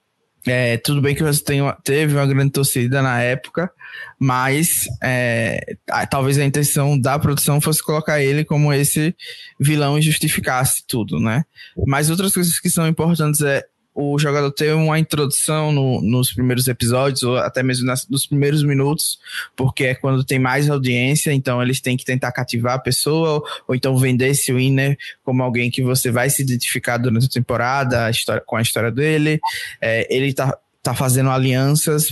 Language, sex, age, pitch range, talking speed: Portuguese, male, 20-39, 130-150 Hz, 165 wpm